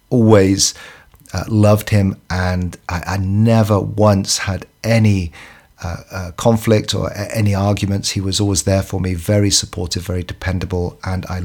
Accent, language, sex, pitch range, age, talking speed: British, English, male, 90-105 Hz, 40-59, 150 wpm